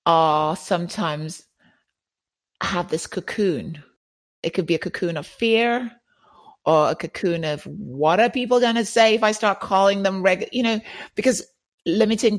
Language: English